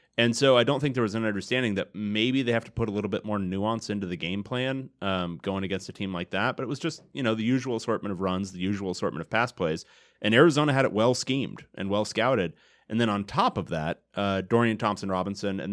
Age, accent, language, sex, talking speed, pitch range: 30-49, American, English, male, 250 wpm, 90-110 Hz